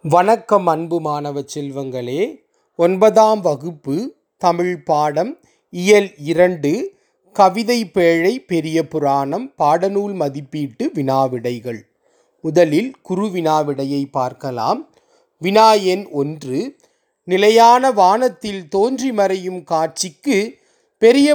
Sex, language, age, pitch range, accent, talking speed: male, Tamil, 30-49, 160-225 Hz, native, 80 wpm